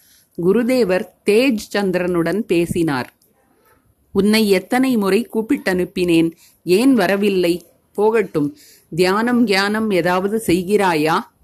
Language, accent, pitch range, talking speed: Tamil, native, 175-220 Hz, 80 wpm